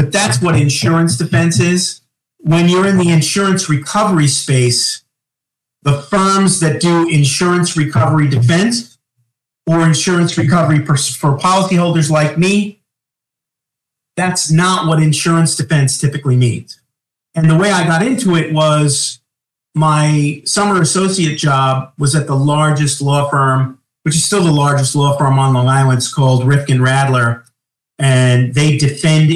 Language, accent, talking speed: English, American, 140 wpm